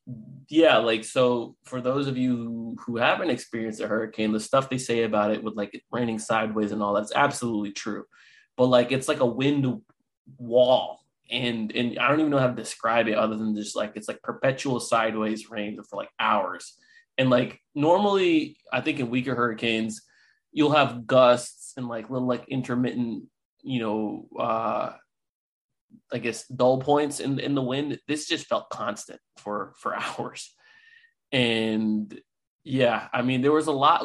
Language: English